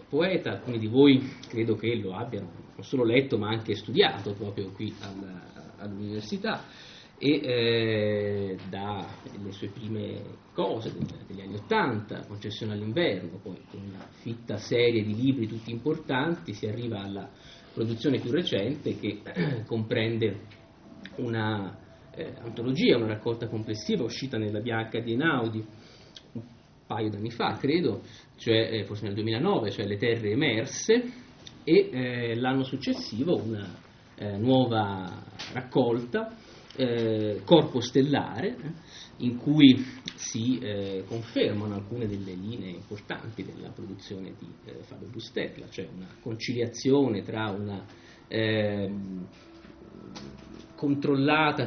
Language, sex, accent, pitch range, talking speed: Italian, male, native, 105-125 Hz, 125 wpm